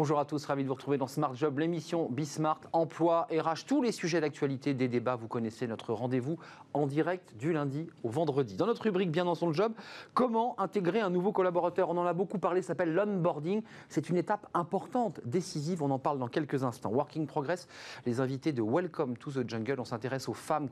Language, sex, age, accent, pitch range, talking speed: French, male, 40-59, French, 135-180 Hz, 210 wpm